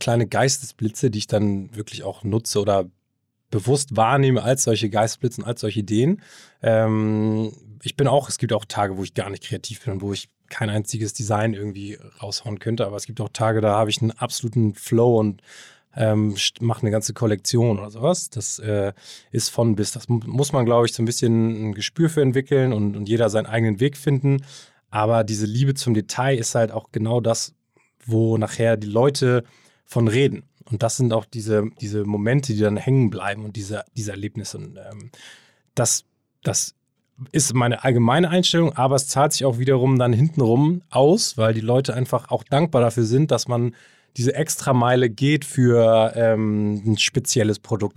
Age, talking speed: 20-39, 190 wpm